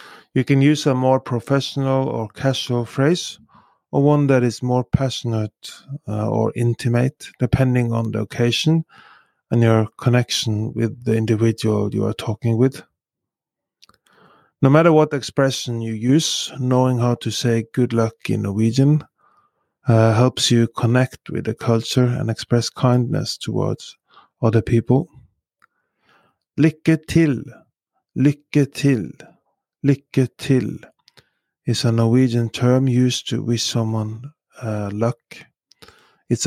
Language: English